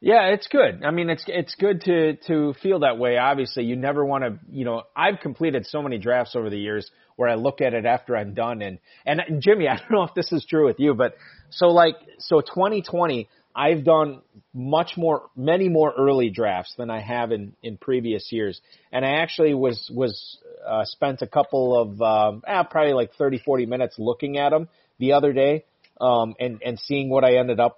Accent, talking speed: American, 215 wpm